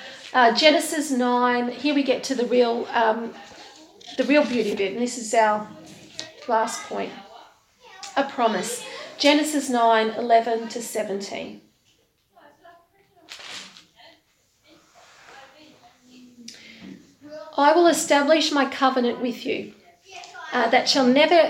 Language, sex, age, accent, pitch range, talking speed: English, female, 40-59, Australian, 245-300 Hz, 105 wpm